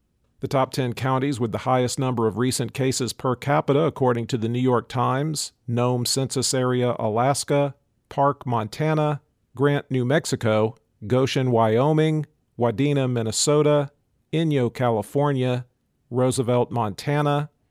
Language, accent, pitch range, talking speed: English, American, 120-140 Hz, 120 wpm